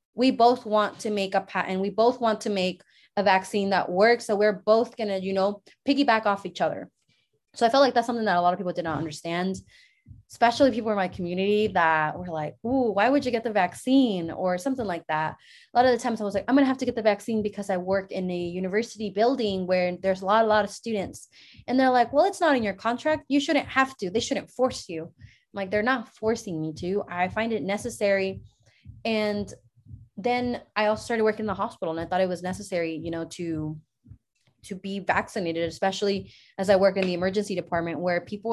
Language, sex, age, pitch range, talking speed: English, female, 20-39, 175-220 Hz, 235 wpm